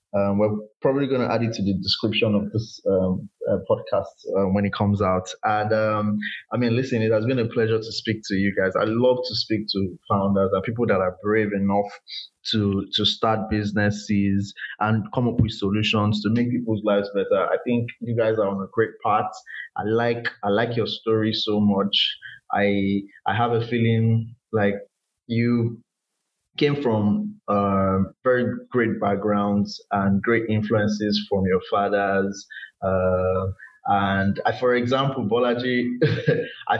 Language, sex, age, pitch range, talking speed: English, male, 20-39, 100-115 Hz, 165 wpm